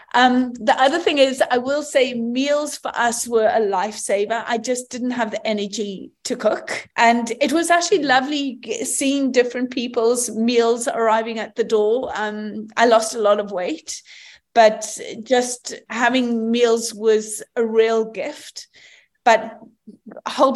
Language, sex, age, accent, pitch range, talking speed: English, female, 30-49, British, 225-275 Hz, 150 wpm